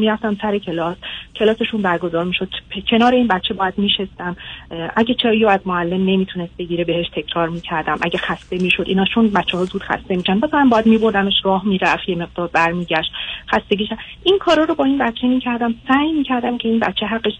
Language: Persian